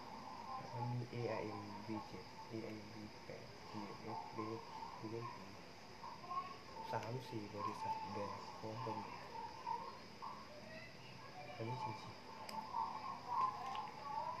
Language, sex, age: Thai, male, 20-39